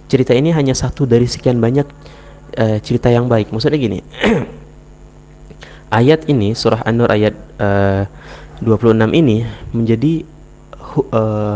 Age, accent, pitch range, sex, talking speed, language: 30-49, native, 105-135 Hz, male, 120 wpm, Indonesian